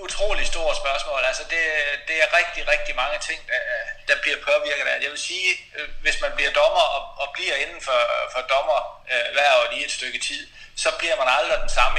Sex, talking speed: male, 210 wpm